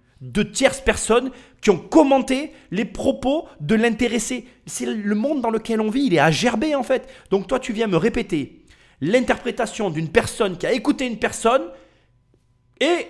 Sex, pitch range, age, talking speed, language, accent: male, 150-245 Hz, 30-49, 175 wpm, French, French